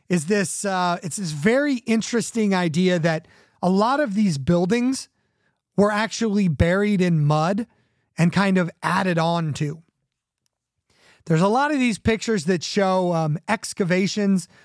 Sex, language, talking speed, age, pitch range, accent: male, English, 145 wpm, 30-49, 175-225 Hz, American